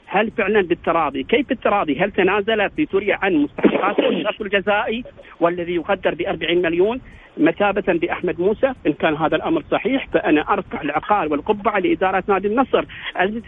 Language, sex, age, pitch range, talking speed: Arabic, male, 50-69, 185-255 Hz, 140 wpm